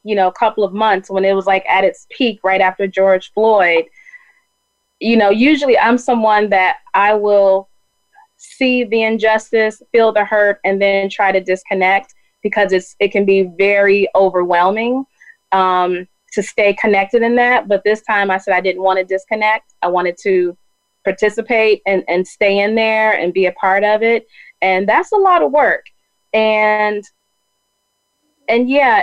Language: English